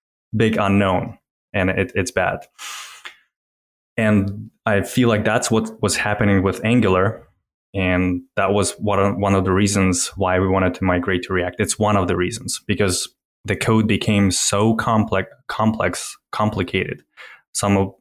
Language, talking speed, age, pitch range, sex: English, 145 wpm, 20-39, 95-110 Hz, male